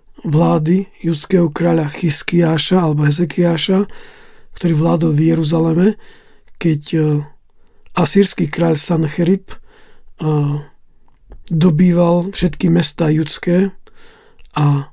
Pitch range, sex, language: 155-185 Hz, male, Slovak